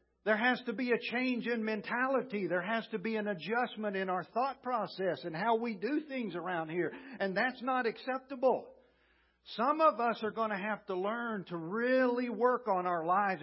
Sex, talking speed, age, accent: male, 195 wpm, 50-69, American